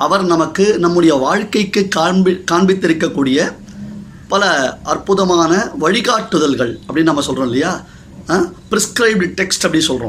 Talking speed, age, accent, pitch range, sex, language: 95 wpm, 30-49, native, 150-190 Hz, male, Tamil